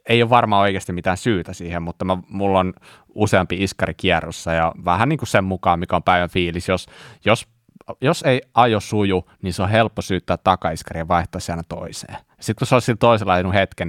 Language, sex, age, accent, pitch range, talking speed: Finnish, male, 20-39, native, 85-105 Hz, 190 wpm